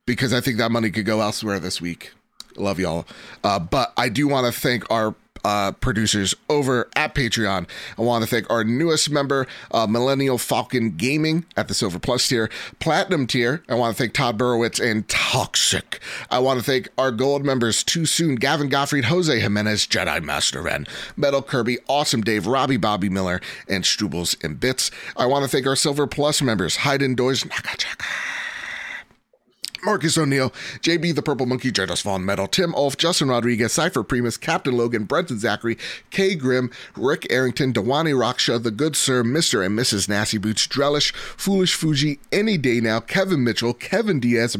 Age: 30-49